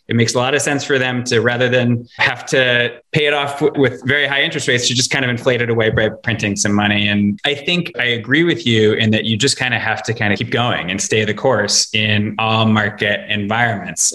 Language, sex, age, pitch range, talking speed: English, male, 20-39, 105-125 Hz, 250 wpm